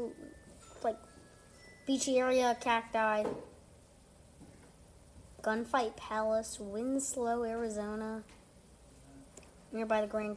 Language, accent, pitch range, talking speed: English, American, 225-275 Hz, 65 wpm